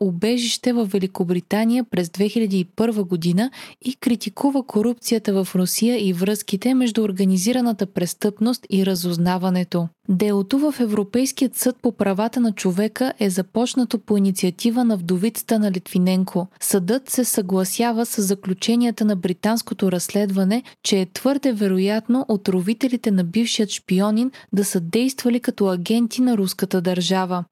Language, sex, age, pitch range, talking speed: Bulgarian, female, 20-39, 190-240 Hz, 125 wpm